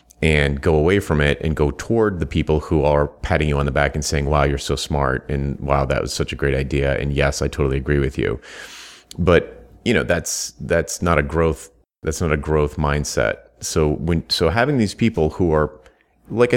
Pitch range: 70-90 Hz